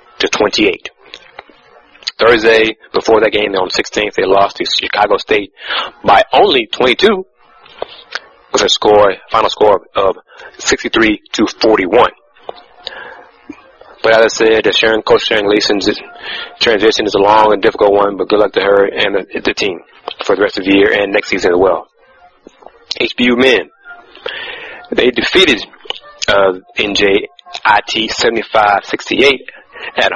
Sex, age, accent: male, 30-49, American